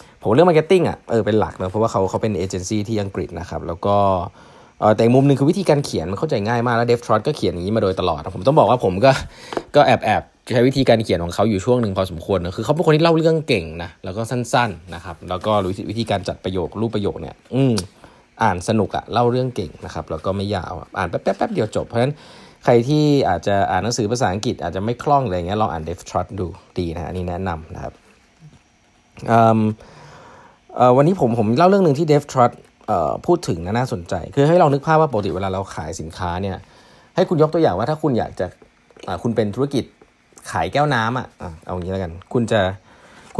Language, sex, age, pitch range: Thai, male, 20-39, 95-135 Hz